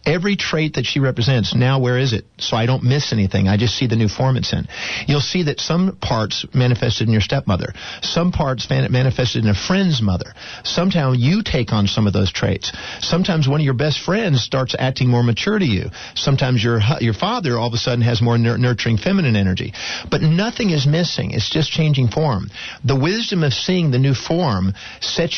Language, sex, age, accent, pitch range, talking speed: English, male, 50-69, American, 115-150 Hz, 205 wpm